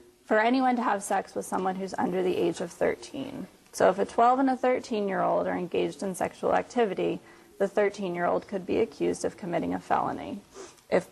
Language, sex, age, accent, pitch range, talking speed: English, female, 30-49, American, 205-275 Hz, 210 wpm